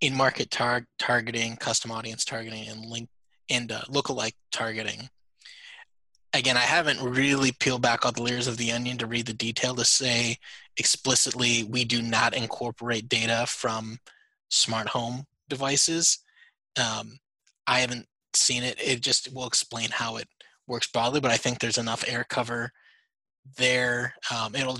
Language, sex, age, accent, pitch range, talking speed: English, male, 20-39, American, 115-130 Hz, 150 wpm